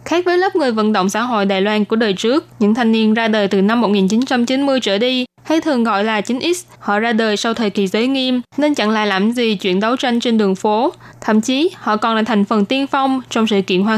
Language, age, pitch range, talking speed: Vietnamese, 10-29, 210-255 Hz, 260 wpm